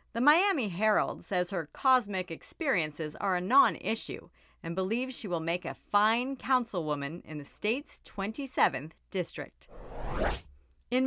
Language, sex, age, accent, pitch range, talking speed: English, female, 40-59, American, 170-245 Hz, 135 wpm